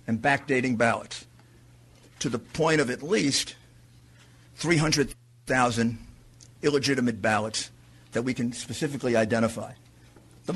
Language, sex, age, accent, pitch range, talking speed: English, male, 50-69, American, 110-135 Hz, 100 wpm